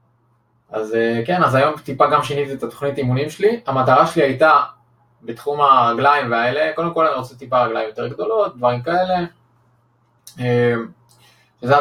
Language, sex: Hebrew, male